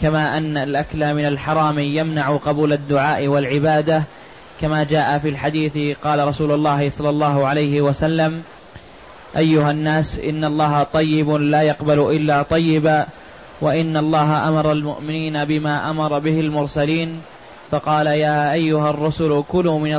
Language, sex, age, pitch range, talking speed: Arabic, male, 20-39, 150-155 Hz, 130 wpm